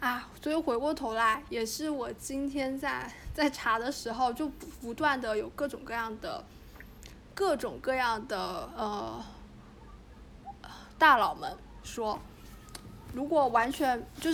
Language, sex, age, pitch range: Chinese, female, 10-29, 215-285 Hz